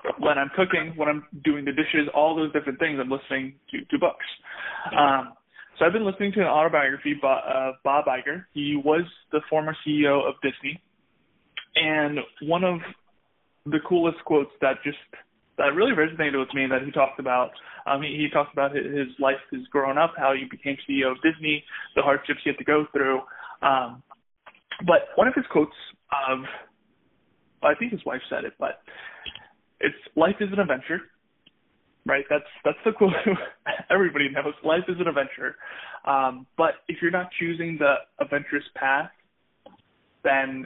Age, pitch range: 20-39, 135-165 Hz